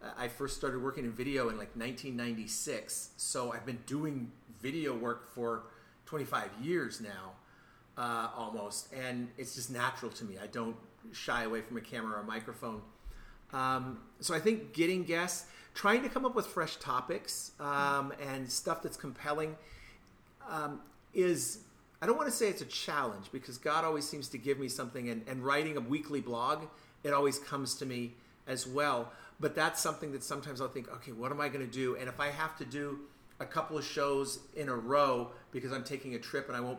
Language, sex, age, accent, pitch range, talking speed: English, male, 40-59, American, 120-145 Hz, 195 wpm